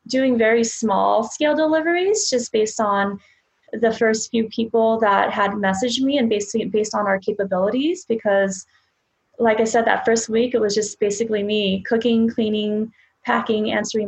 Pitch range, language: 205-235 Hz, English